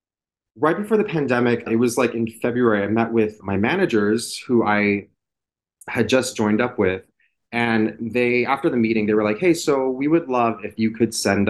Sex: male